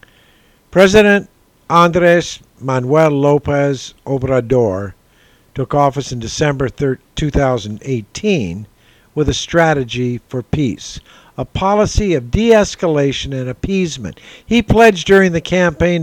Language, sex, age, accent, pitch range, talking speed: English, male, 50-69, American, 120-160 Hz, 95 wpm